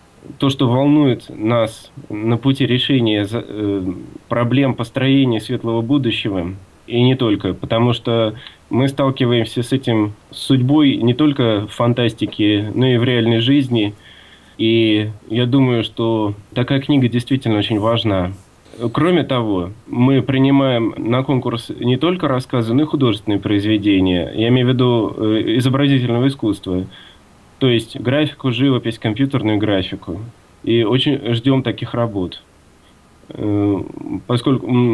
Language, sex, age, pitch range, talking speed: Russian, male, 20-39, 110-130 Hz, 120 wpm